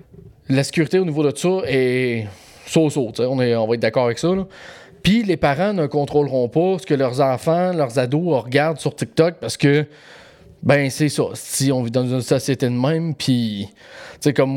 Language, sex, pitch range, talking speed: French, male, 130-160 Hz, 200 wpm